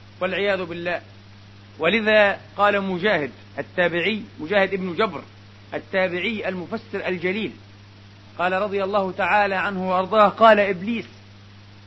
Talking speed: 100 wpm